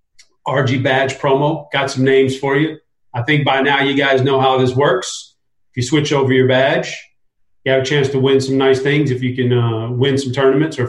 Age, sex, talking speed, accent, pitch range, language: 40-59, male, 225 wpm, American, 130-160 Hz, English